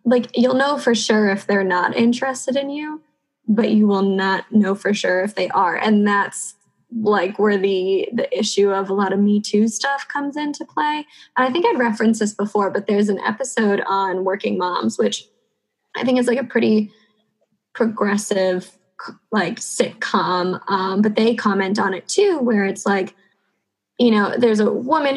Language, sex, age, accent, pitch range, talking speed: English, female, 10-29, American, 200-235 Hz, 185 wpm